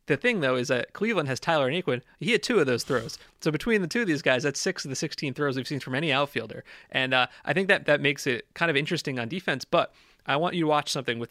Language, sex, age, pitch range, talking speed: English, male, 30-49, 125-165 Hz, 285 wpm